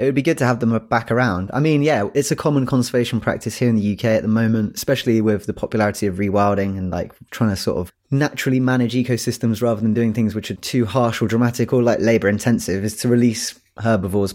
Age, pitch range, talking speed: 20-39, 105-125 Hz, 240 wpm